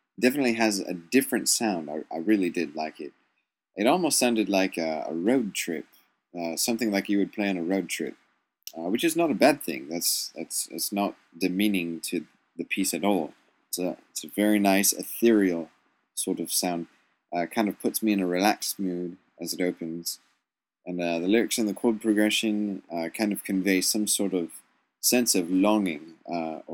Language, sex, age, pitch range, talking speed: English, male, 20-39, 90-110 Hz, 200 wpm